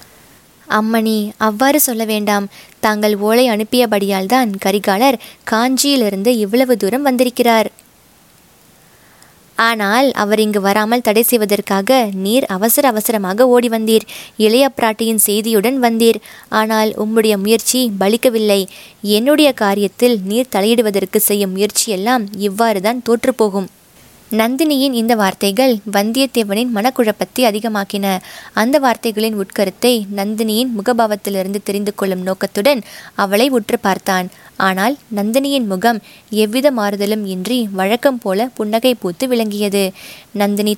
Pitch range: 200-240 Hz